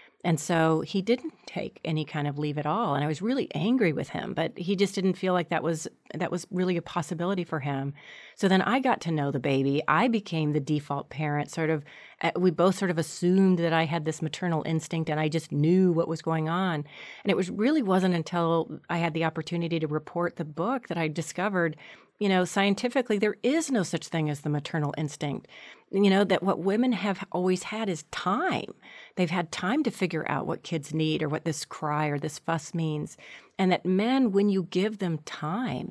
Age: 40-59